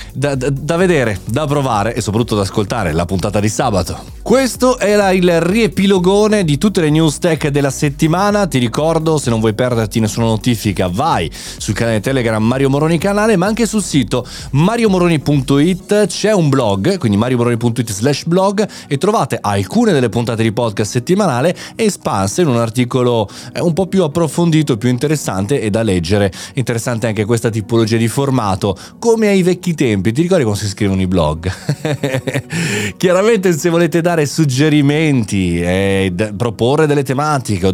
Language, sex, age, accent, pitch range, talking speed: Italian, male, 30-49, native, 110-160 Hz, 160 wpm